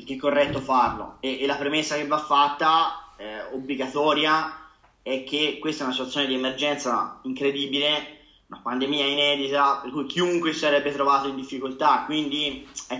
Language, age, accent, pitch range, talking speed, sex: Italian, 20-39, native, 140-175 Hz, 160 wpm, male